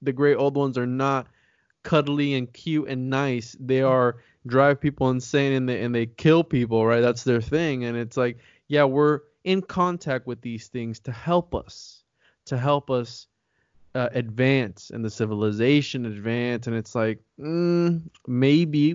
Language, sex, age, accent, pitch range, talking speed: English, male, 20-39, American, 125-155 Hz, 170 wpm